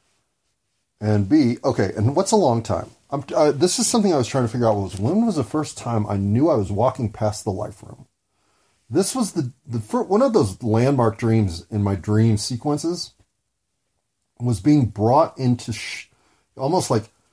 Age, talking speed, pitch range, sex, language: 30-49, 190 wpm, 105-130 Hz, male, English